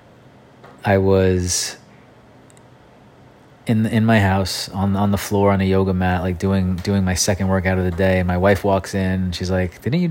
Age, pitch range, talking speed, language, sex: 30-49, 90-110 Hz, 200 wpm, English, male